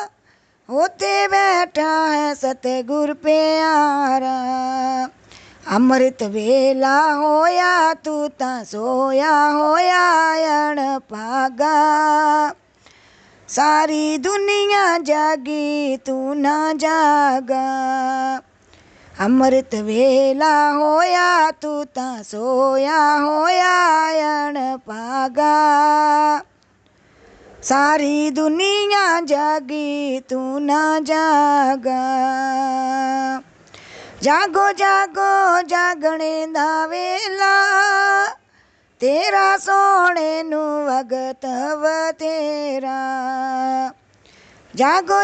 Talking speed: 55 wpm